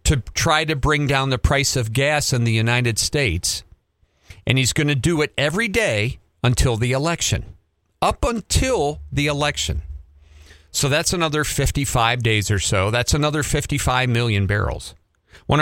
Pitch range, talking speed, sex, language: 100-150 Hz, 160 wpm, male, English